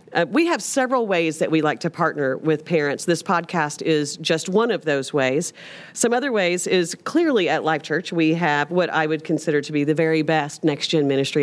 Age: 40-59